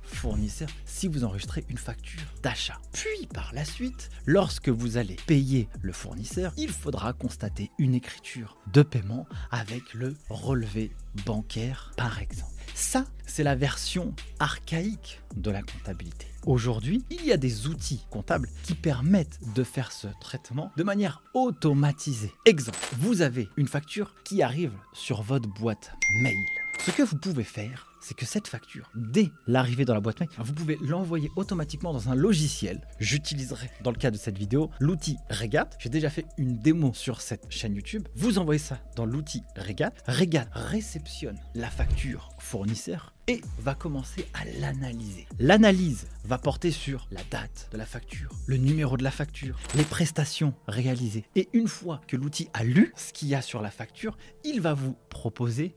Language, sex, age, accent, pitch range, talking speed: French, male, 30-49, French, 115-160 Hz, 170 wpm